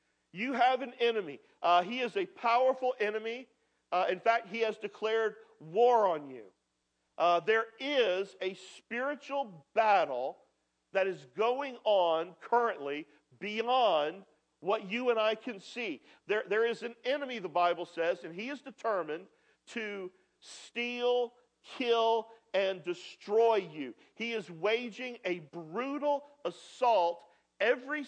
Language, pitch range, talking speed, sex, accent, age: English, 180-255 Hz, 130 wpm, male, American, 50-69